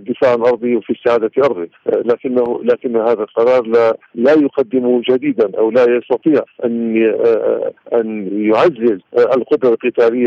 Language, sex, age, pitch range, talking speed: Arabic, male, 50-69, 115-150 Hz, 125 wpm